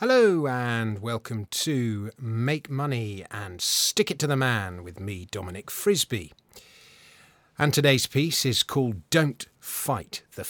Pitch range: 105-145 Hz